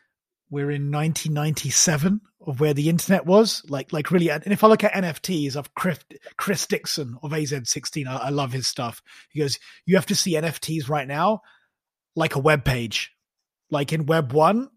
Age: 30-49